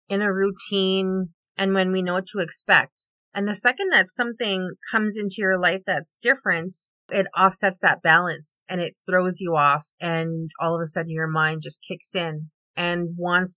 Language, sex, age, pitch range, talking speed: English, female, 30-49, 165-195 Hz, 185 wpm